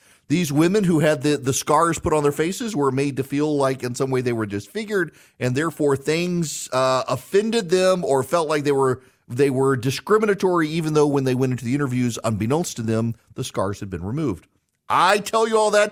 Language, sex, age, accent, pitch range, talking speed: English, male, 40-59, American, 110-165 Hz, 210 wpm